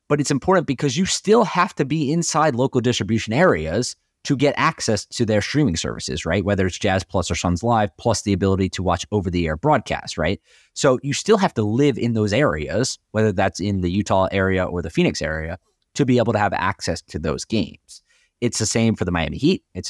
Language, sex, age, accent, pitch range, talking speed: English, male, 30-49, American, 95-130 Hz, 215 wpm